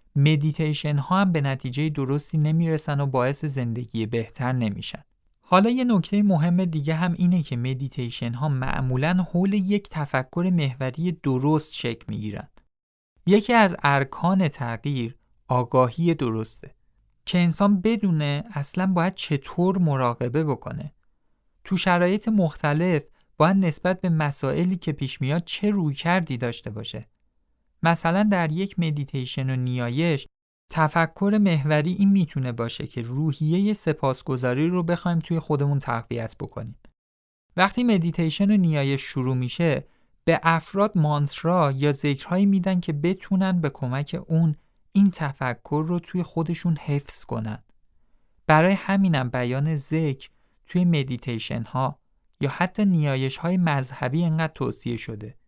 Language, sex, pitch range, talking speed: Persian, male, 130-175 Hz, 130 wpm